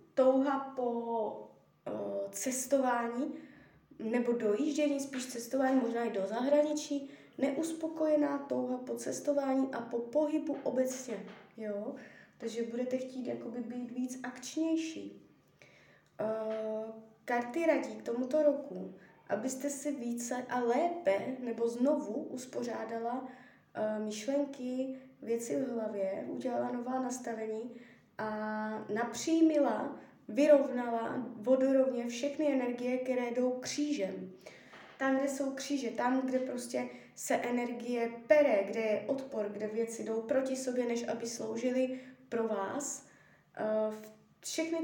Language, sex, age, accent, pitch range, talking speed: Czech, female, 20-39, native, 230-280 Hz, 105 wpm